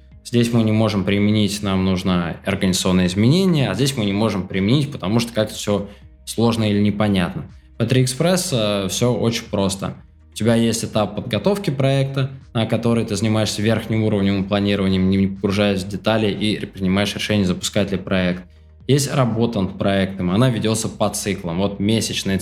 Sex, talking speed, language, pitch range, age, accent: male, 165 wpm, Russian, 95-115 Hz, 20-39, native